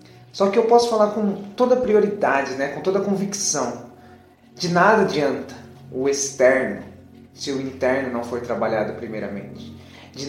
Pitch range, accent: 120-180 Hz, Brazilian